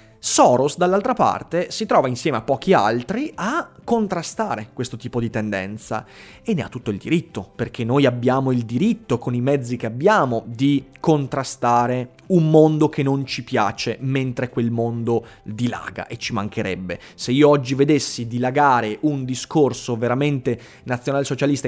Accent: native